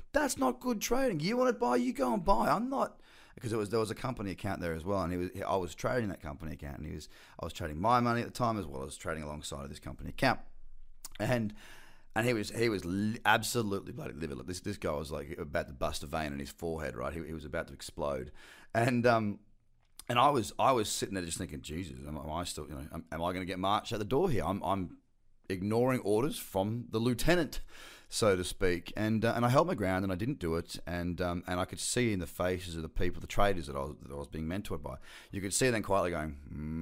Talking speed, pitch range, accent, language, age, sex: 270 wpm, 85-115 Hz, Australian, English, 30-49, male